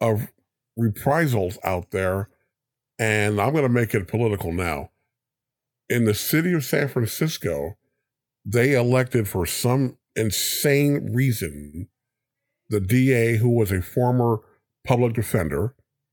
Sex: male